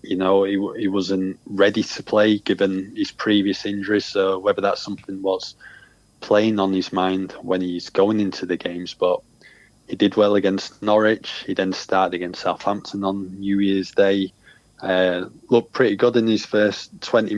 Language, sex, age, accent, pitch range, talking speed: English, male, 20-39, British, 95-105 Hz, 175 wpm